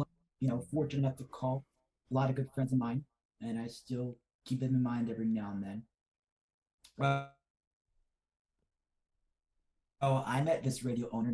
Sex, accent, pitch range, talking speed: male, American, 115-140 Hz, 165 wpm